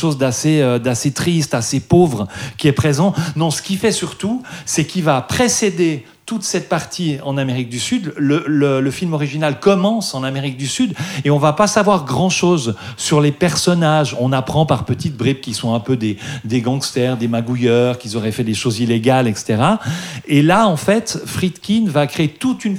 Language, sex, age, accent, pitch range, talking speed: French, male, 40-59, French, 135-180 Hz, 200 wpm